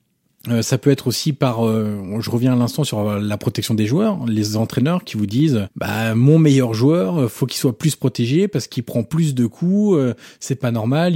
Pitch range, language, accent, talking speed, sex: 120-160 Hz, French, French, 215 wpm, male